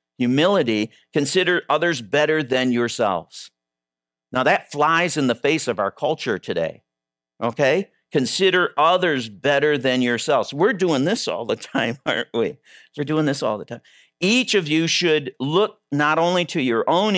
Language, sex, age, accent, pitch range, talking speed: English, male, 50-69, American, 115-165 Hz, 160 wpm